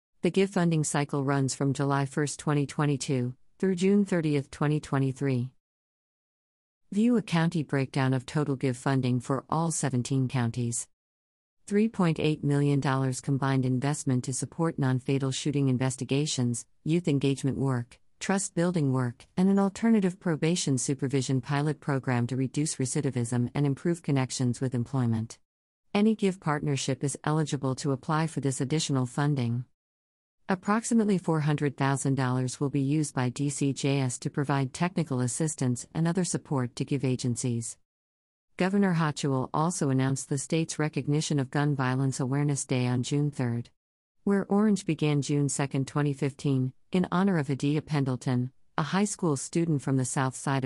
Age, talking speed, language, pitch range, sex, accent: 50-69, 140 wpm, English, 130-155 Hz, female, American